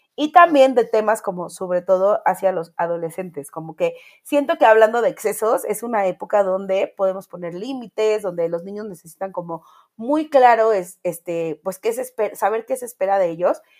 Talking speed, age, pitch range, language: 185 wpm, 30-49, 185-245 Hz, Spanish